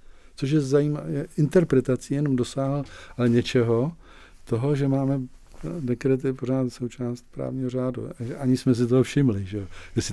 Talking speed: 135 wpm